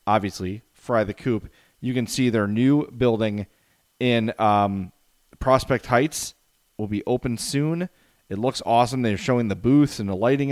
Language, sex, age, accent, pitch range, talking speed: English, male, 30-49, American, 105-140 Hz, 160 wpm